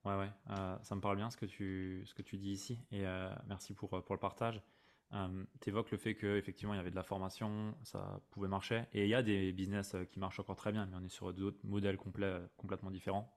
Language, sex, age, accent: French, male, 20-39, French